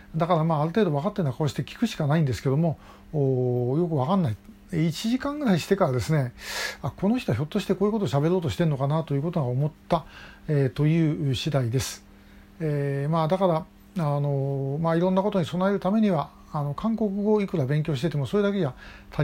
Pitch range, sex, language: 130-180 Hz, male, Japanese